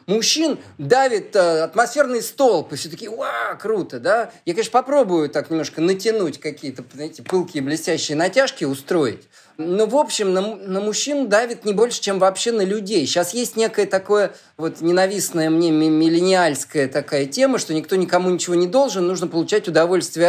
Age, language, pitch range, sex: 20-39, Russian, 155-225 Hz, male